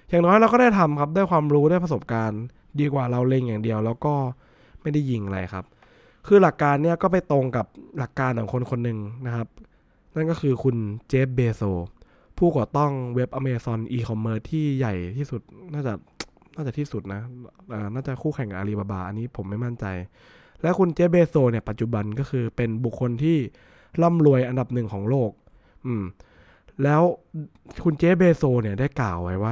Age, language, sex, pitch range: 20-39, English, male, 110-150 Hz